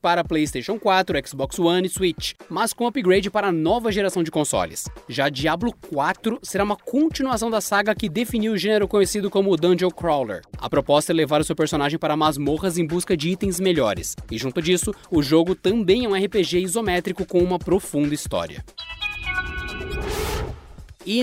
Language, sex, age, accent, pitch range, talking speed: Portuguese, male, 20-39, Brazilian, 165-215 Hz, 170 wpm